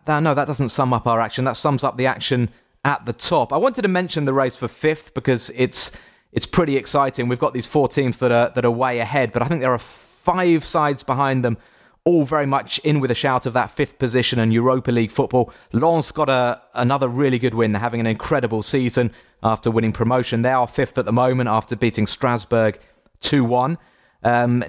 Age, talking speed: 30-49, 215 wpm